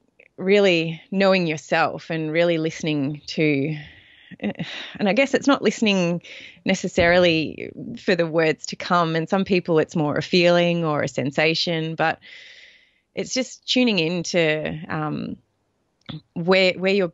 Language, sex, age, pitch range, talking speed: English, female, 30-49, 155-190 Hz, 125 wpm